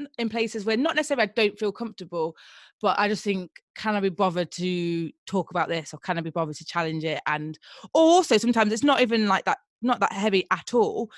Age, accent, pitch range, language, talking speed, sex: 20-39, British, 165-210 Hz, English, 225 wpm, female